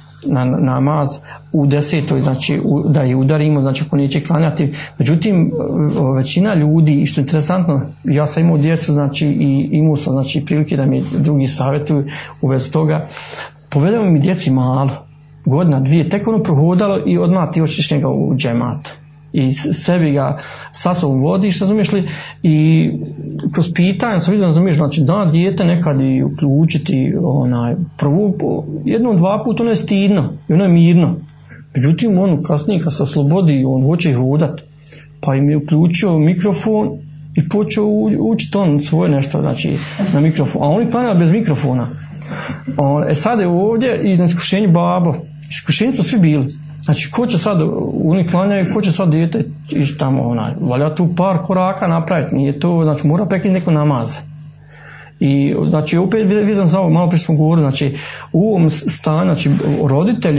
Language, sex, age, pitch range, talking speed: Croatian, male, 40-59, 145-175 Hz, 160 wpm